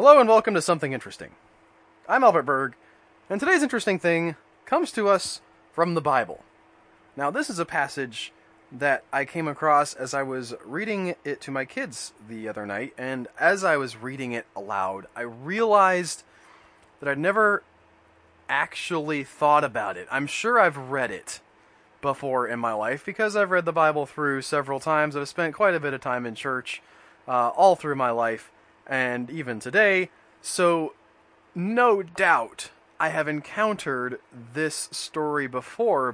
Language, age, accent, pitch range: English, 20-39, American, 125-170 Hz